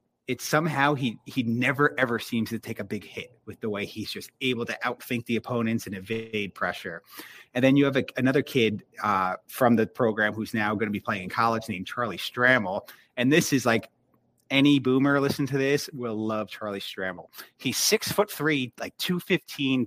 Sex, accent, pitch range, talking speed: male, American, 110-135 Hz, 195 wpm